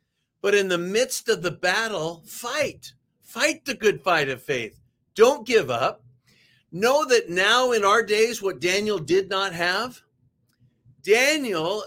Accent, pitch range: American, 140-210 Hz